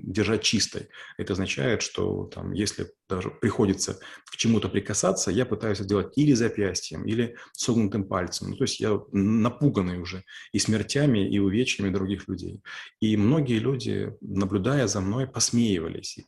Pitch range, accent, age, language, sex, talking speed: 95-115 Hz, native, 20-39, Russian, male, 145 wpm